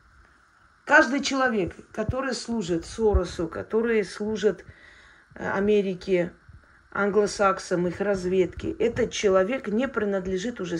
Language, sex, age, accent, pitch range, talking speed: Russian, female, 40-59, native, 200-270 Hz, 90 wpm